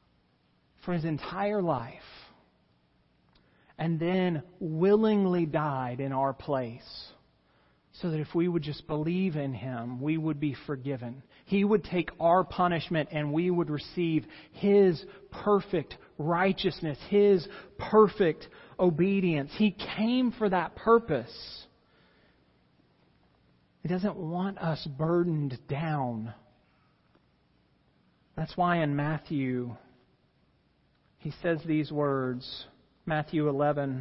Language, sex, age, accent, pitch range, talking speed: English, male, 40-59, American, 140-180 Hz, 105 wpm